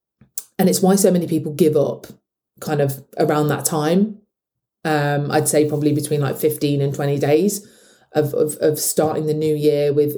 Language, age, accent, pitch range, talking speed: English, 30-49, British, 145-185 Hz, 185 wpm